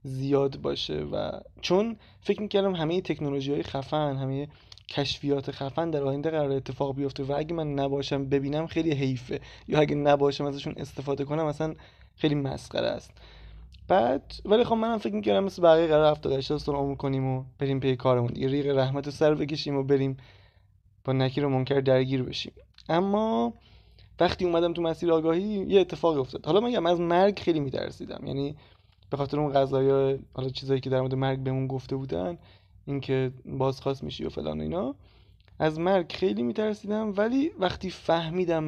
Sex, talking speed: male, 170 wpm